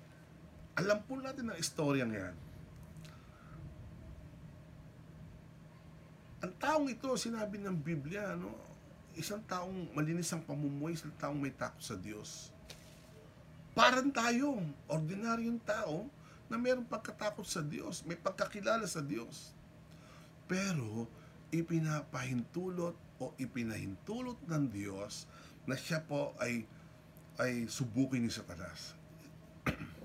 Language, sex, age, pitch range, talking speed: English, male, 50-69, 120-175 Hz, 100 wpm